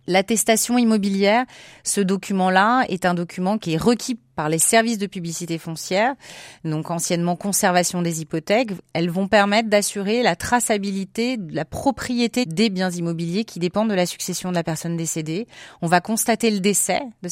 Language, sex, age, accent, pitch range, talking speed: French, female, 30-49, French, 170-205 Hz, 165 wpm